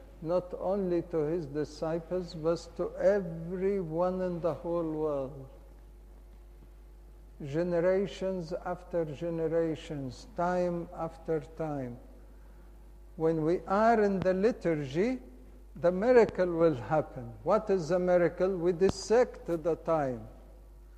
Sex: male